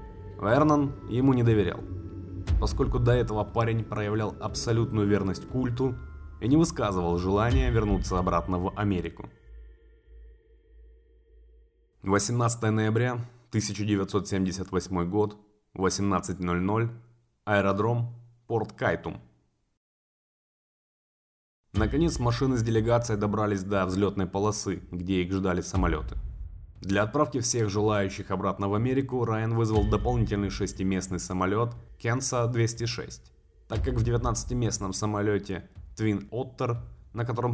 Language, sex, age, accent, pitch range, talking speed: Russian, male, 20-39, native, 95-120 Hz, 100 wpm